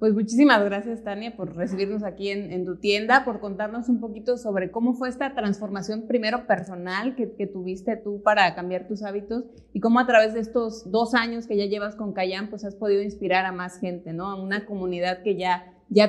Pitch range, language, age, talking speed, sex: 190-230 Hz, Spanish, 30-49, 215 wpm, female